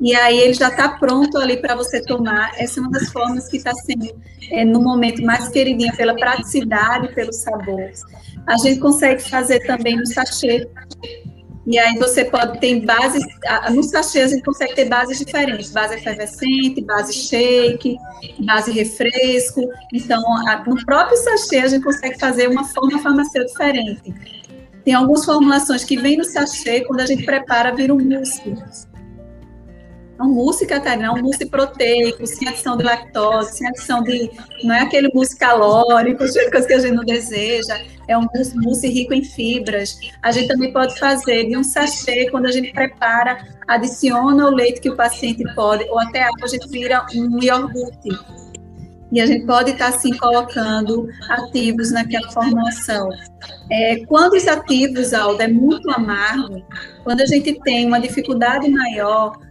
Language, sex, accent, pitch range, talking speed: Portuguese, female, Brazilian, 230-265 Hz, 165 wpm